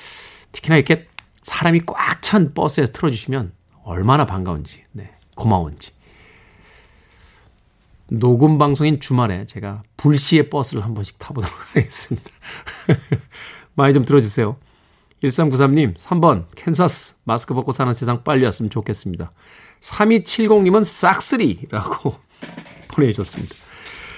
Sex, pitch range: male, 115-180 Hz